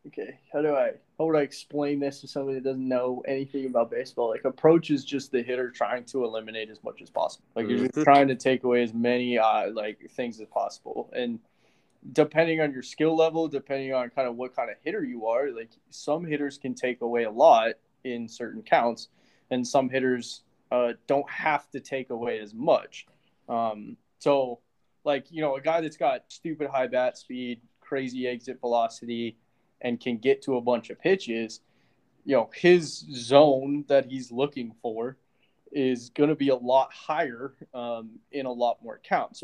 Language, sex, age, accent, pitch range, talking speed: English, male, 20-39, American, 120-140 Hz, 190 wpm